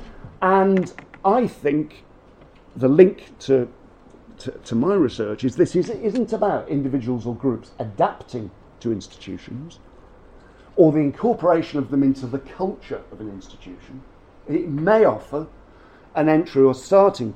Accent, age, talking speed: British, 50-69, 140 wpm